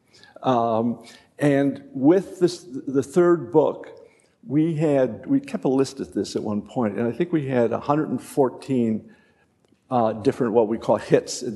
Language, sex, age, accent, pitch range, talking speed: English, male, 50-69, American, 115-150 Hz, 160 wpm